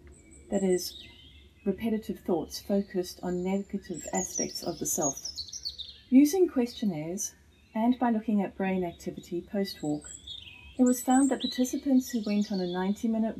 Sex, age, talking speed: female, 40-59, 135 wpm